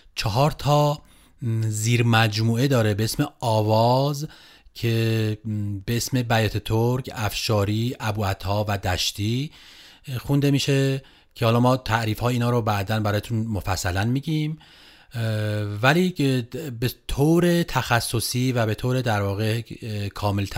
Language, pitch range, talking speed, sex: Persian, 105-135 Hz, 115 wpm, male